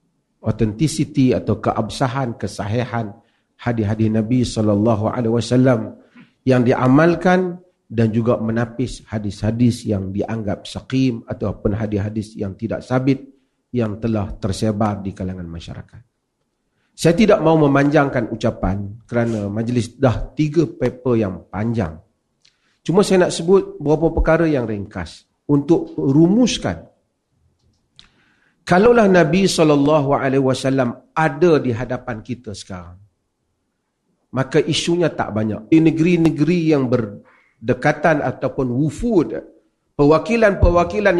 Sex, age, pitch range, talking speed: male, 40-59, 110-160 Hz, 100 wpm